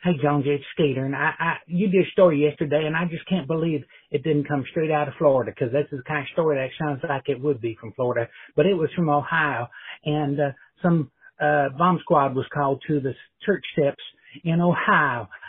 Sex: male